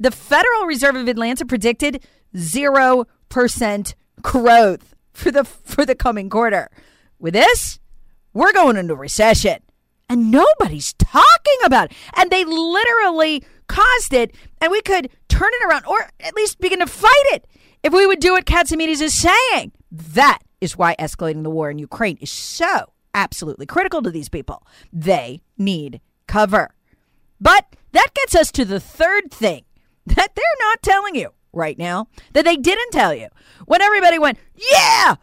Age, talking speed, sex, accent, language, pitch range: 40-59, 160 wpm, female, American, English, 210-350 Hz